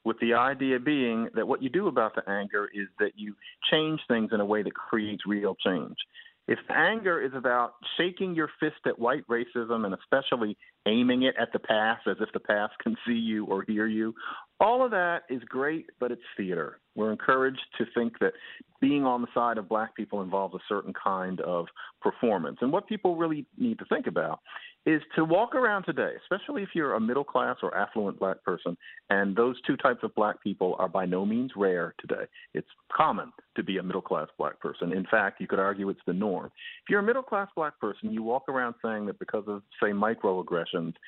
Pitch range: 110-175 Hz